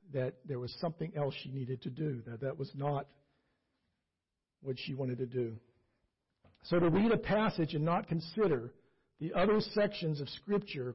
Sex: male